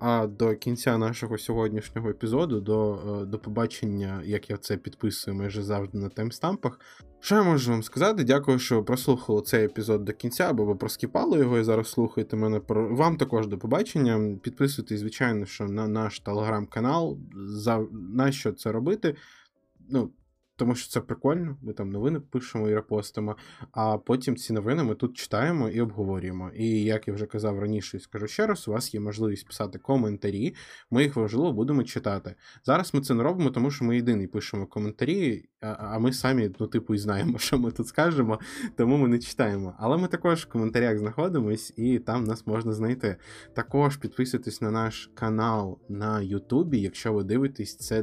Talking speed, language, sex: 175 wpm, Ukrainian, male